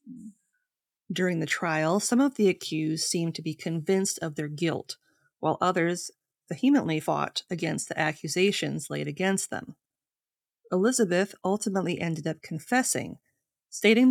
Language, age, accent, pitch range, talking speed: English, 30-49, American, 160-200 Hz, 130 wpm